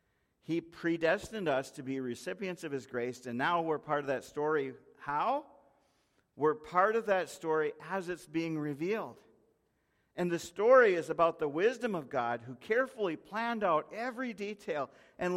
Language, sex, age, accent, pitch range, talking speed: English, male, 50-69, American, 150-195 Hz, 165 wpm